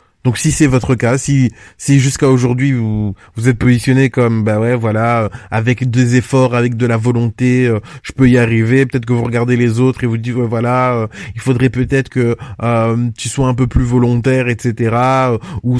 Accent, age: French, 20-39